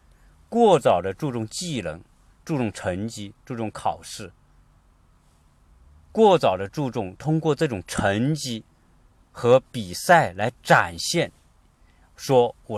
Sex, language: male, Chinese